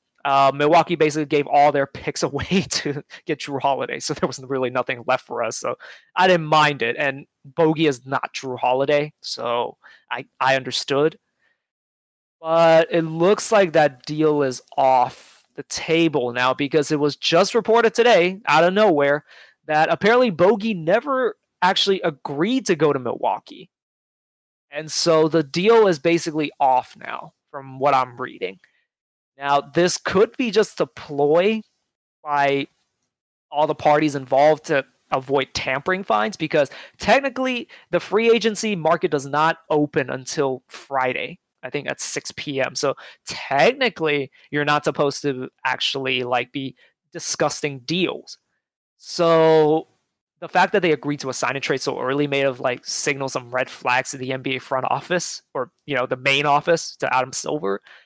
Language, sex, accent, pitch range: English, male, American, 135-170 Hz